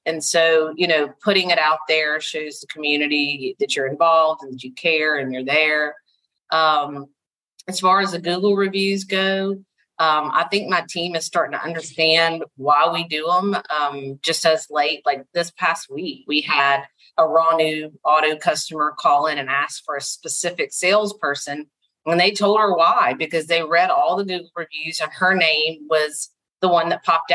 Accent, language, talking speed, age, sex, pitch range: American, English, 185 wpm, 40-59, female, 150-185 Hz